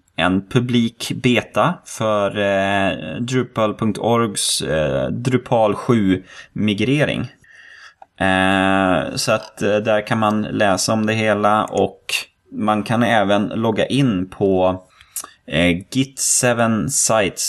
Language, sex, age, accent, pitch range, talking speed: Swedish, male, 20-39, native, 90-115 Hz, 95 wpm